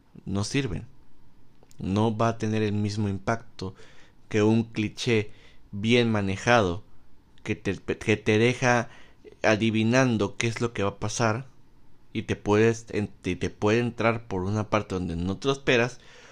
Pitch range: 100-125 Hz